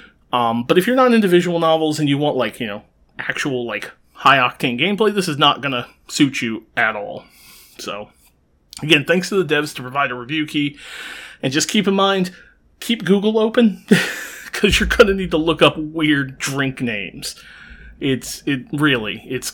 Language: English